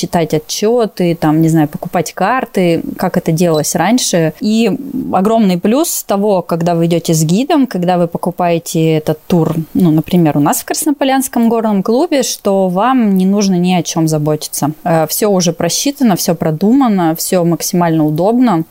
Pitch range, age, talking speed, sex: 165-215 Hz, 20-39, 155 wpm, female